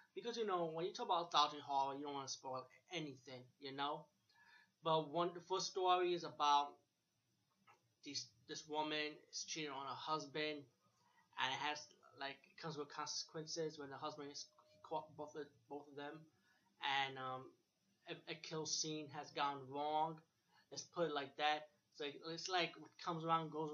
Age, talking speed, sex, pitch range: 20-39, 185 wpm, male, 140-155 Hz